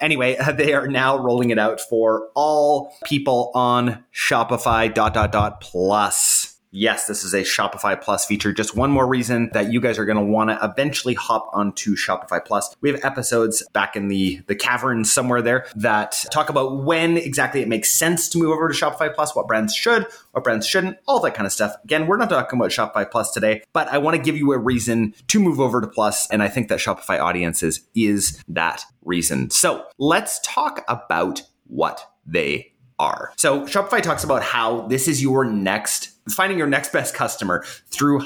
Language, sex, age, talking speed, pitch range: English, male, 30-49, 200 wpm, 110-155 Hz